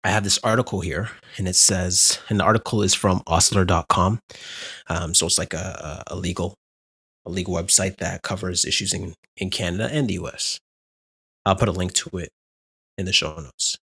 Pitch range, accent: 95-125 Hz, American